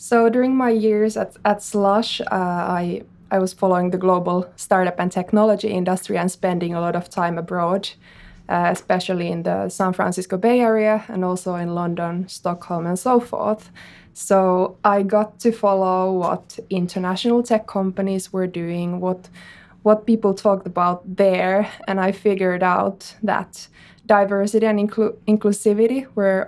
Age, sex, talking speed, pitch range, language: 20-39, female, 155 wpm, 185-215 Hz, Finnish